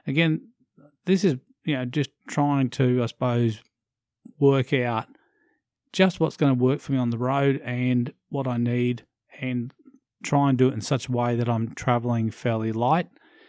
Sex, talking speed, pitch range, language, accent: male, 180 wpm, 120-140 Hz, English, Australian